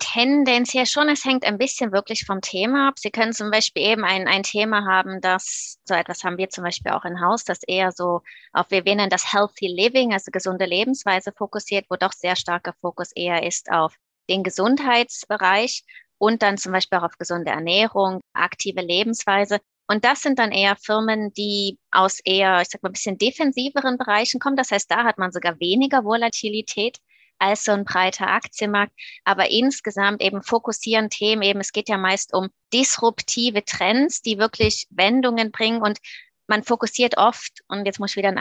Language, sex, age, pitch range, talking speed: German, female, 20-39, 185-225 Hz, 185 wpm